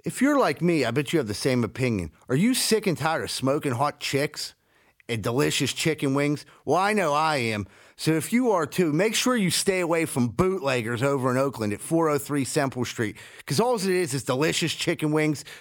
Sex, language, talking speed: male, English, 215 wpm